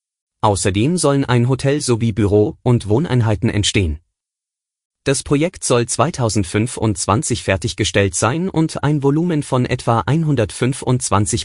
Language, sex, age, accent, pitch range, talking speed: German, male, 30-49, German, 100-130 Hz, 110 wpm